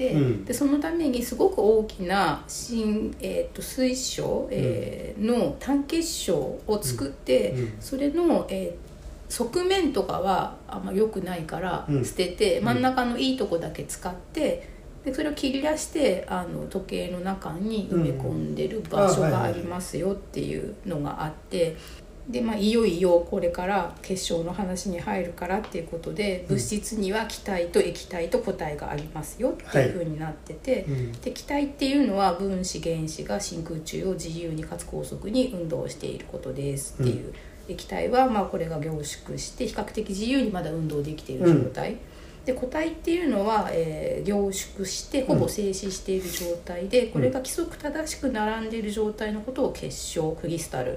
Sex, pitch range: female, 170-255 Hz